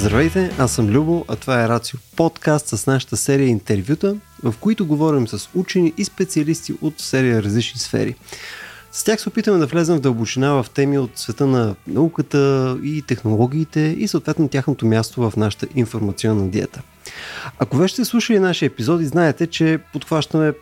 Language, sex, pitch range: Bulgarian, male, 110-155 Hz